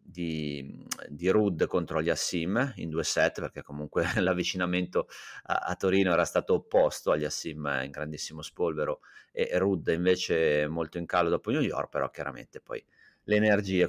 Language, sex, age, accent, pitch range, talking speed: Italian, male, 30-49, native, 75-90 Hz, 170 wpm